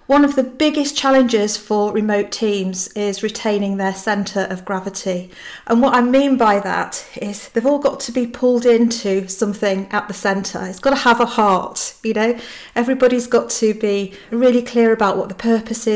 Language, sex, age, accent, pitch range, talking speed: English, female, 40-59, British, 195-235 Hz, 190 wpm